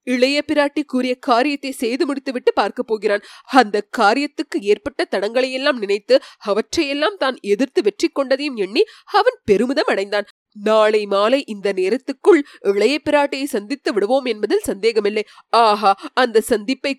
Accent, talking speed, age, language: native, 125 wpm, 20-39, Tamil